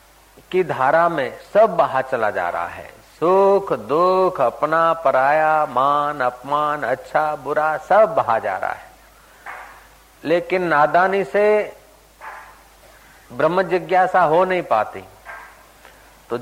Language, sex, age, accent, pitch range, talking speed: Hindi, male, 50-69, native, 140-185 Hz, 115 wpm